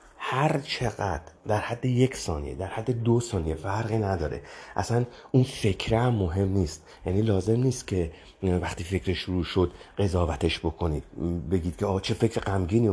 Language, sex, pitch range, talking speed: Persian, male, 85-115 Hz, 155 wpm